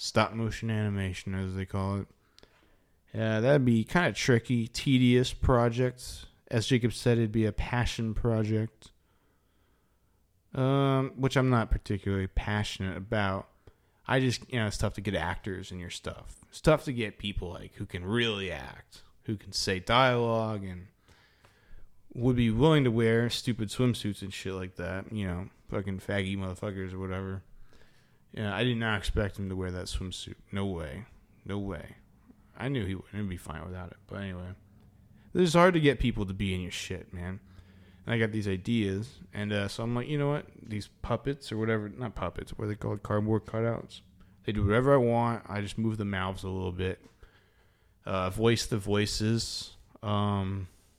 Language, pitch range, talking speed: English, 95-115 Hz, 180 wpm